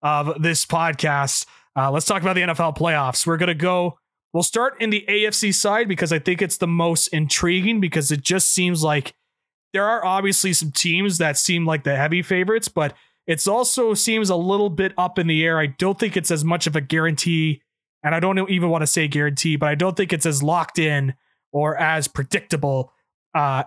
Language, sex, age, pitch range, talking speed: English, male, 20-39, 150-180 Hz, 210 wpm